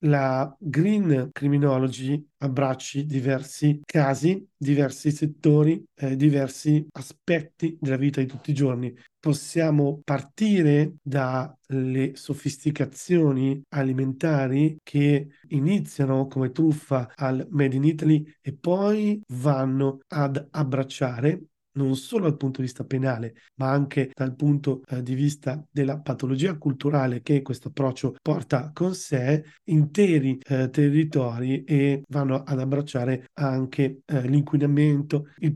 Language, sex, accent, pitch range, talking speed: Italian, male, native, 135-150 Hz, 115 wpm